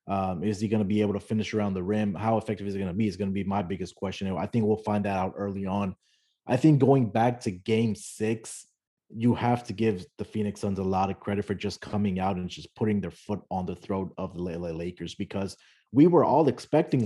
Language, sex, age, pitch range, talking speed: English, male, 20-39, 95-120 Hz, 255 wpm